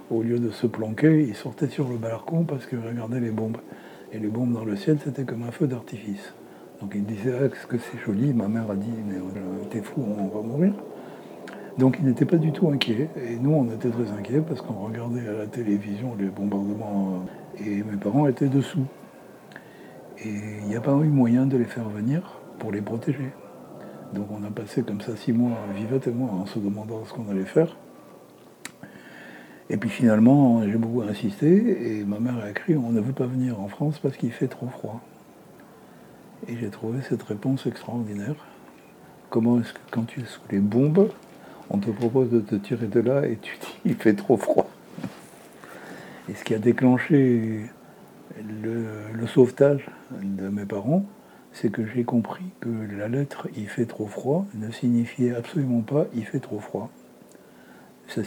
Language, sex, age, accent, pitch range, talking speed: French, male, 60-79, French, 105-130 Hz, 195 wpm